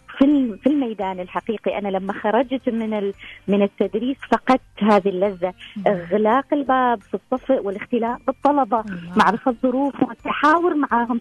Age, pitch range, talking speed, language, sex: 20-39, 220-275 Hz, 130 wpm, Arabic, female